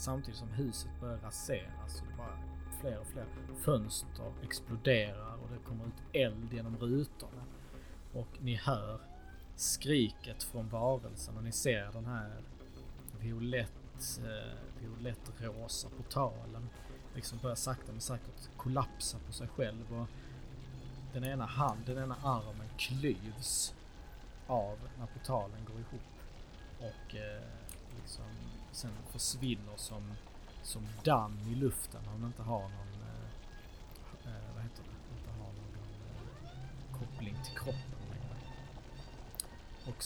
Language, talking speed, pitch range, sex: Swedish, 115 wpm, 100-125 Hz, male